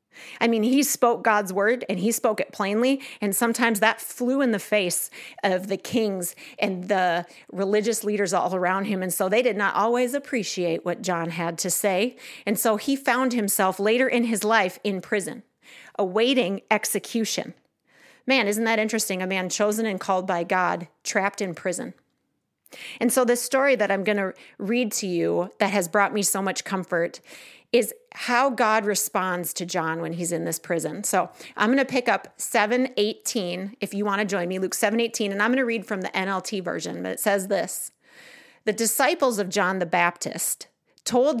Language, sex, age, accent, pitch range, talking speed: English, female, 40-59, American, 190-235 Hz, 190 wpm